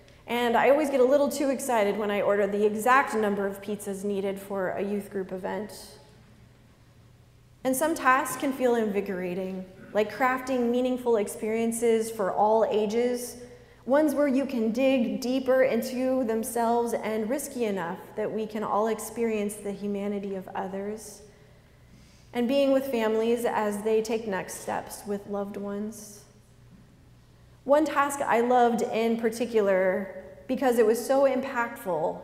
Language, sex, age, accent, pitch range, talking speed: English, female, 20-39, American, 205-255 Hz, 145 wpm